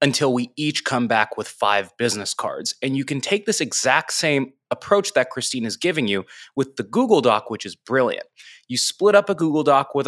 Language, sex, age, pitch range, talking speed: English, male, 20-39, 125-200 Hz, 215 wpm